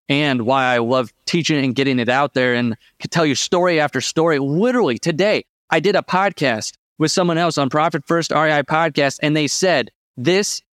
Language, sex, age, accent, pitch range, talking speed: English, male, 30-49, American, 140-180 Hz, 195 wpm